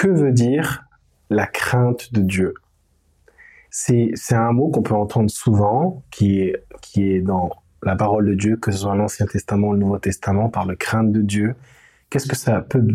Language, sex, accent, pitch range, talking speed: French, male, French, 100-125 Hz, 195 wpm